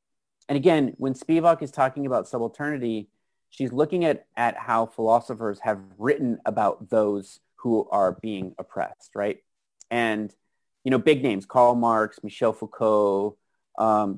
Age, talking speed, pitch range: 30-49, 140 wpm, 110-150 Hz